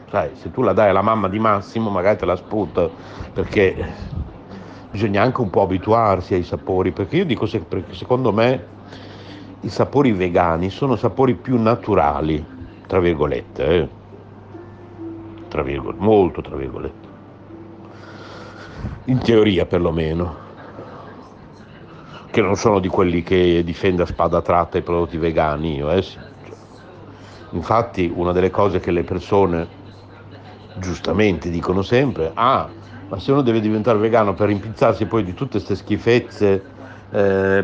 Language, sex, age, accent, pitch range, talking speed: Italian, male, 60-79, native, 95-115 Hz, 135 wpm